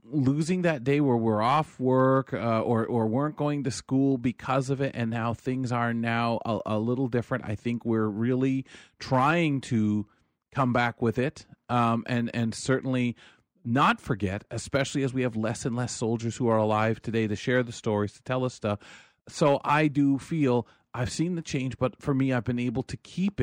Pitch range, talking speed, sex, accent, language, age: 115-135 Hz, 200 wpm, male, American, English, 40-59